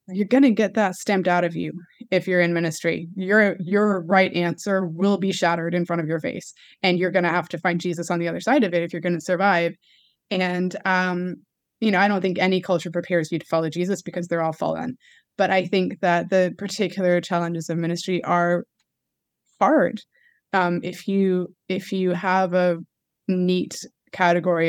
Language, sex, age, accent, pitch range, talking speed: English, female, 20-39, American, 170-190 Hz, 200 wpm